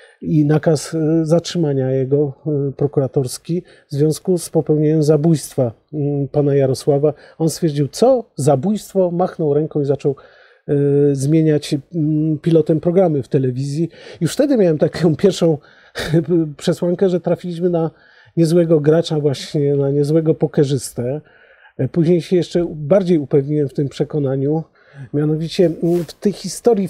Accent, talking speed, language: native, 115 wpm, Polish